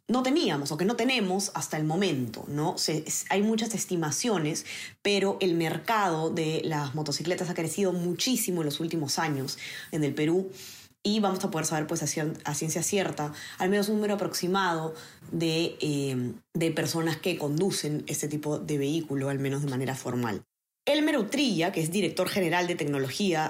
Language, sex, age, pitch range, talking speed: Spanish, female, 20-39, 155-200 Hz, 165 wpm